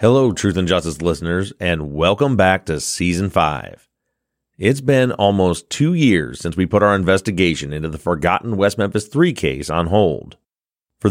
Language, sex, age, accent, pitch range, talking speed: English, male, 30-49, American, 90-130 Hz, 165 wpm